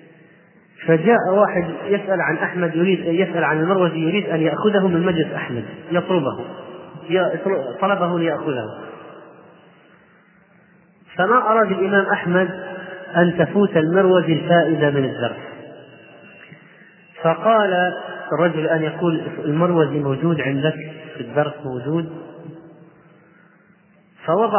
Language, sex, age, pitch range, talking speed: Arabic, male, 30-49, 150-185 Hz, 95 wpm